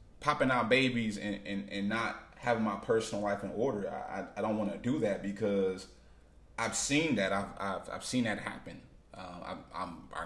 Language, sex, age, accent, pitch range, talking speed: English, male, 20-39, American, 95-125 Hz, 205 wpm